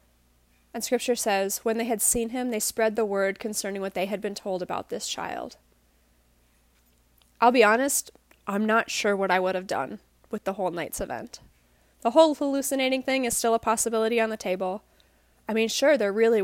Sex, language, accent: female, English, American